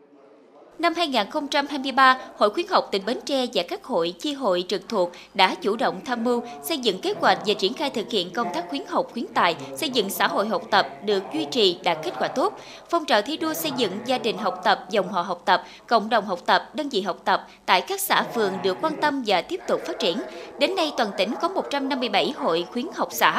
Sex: female